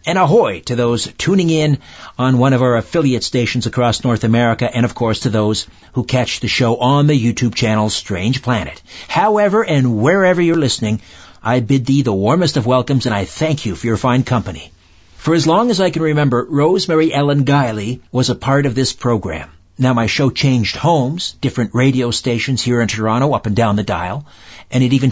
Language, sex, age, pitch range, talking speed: English, male, 50-69, 105-140 Hz, 205 wpm